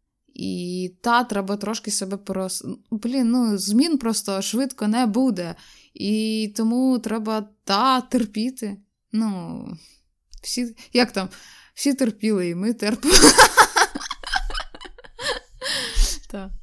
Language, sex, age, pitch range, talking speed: Ukrainian, female, 20-39, 190-240 Hz, 100 wpm